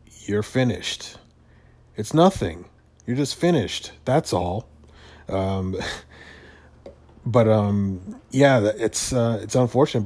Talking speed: 100 wpm